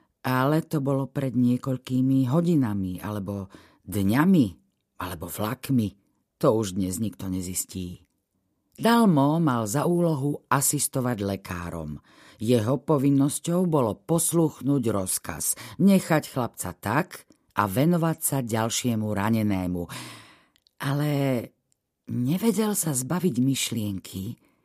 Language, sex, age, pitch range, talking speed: Slovak, female, 50-69, 105-150 Hz, 95 wpm